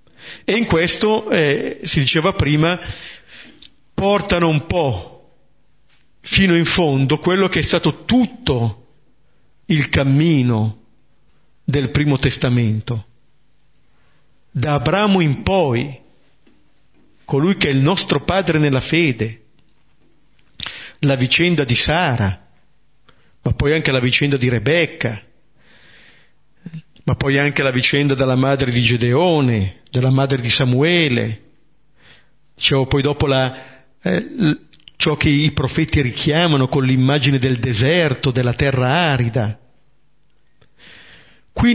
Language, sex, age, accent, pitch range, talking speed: Italian, male, 40-59, native, 130-175 Hz, 110 wpm